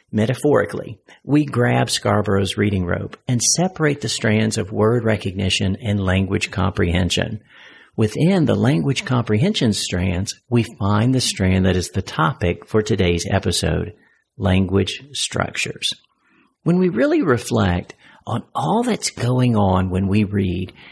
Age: 50-69